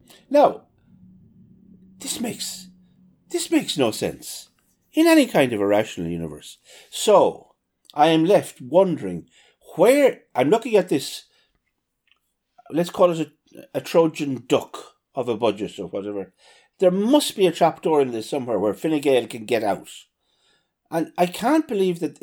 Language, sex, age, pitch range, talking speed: English, male, 60-79, 120-195 Hz, 145 wpm